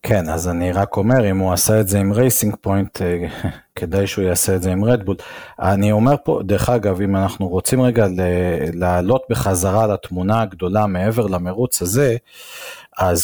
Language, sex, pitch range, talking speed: Hebrew, male, 95-125 Hz, 170 wpm